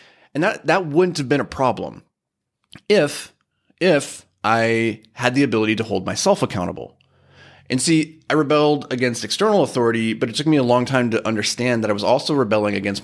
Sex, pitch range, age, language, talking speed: male, 105-130 Hz, 30-49, English, 185 wpm